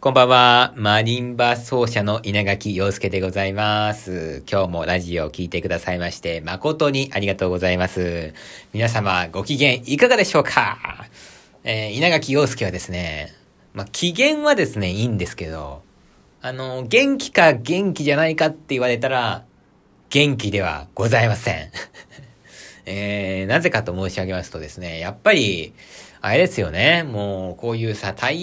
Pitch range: 95-150 Hz